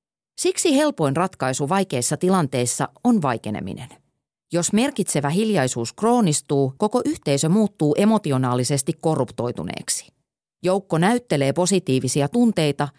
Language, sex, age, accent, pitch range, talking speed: Finnish, female, 30-49, native, 140-225 Hz, 90 wpm